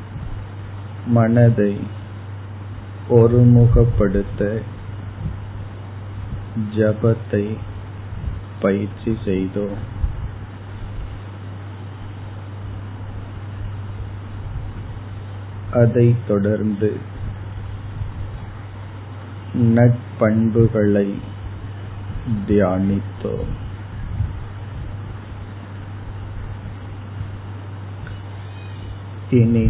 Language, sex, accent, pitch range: Tamil, male, native, 100-105 Hz